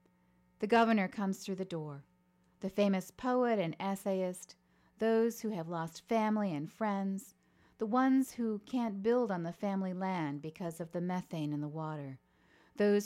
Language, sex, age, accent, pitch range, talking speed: English, female, 40-59, American, 155-210 Hz, 160 wpm